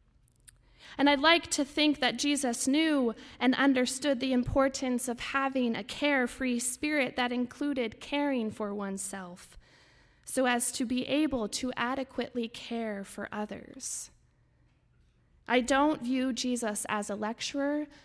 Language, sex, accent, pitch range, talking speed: English, female, American, 220-265 Hz, 130 wpm